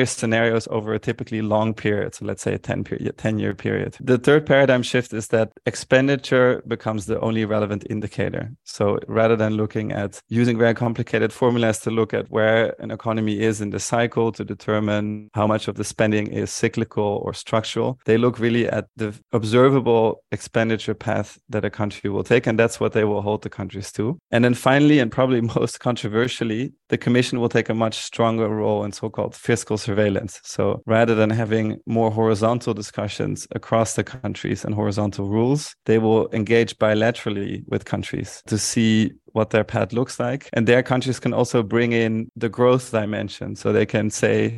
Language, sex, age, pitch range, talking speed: English, male, 20-39, 110-120 Hz, 180 wpm